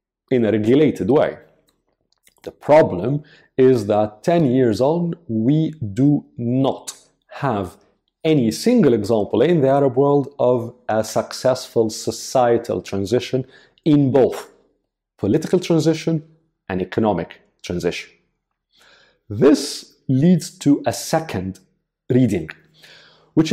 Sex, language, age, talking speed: male, English, 40-59, 105 wpm